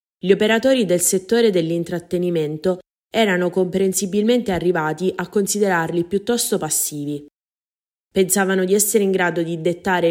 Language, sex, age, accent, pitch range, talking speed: Italian, female, 20-39, native, 160-195 Hz, 115 wpm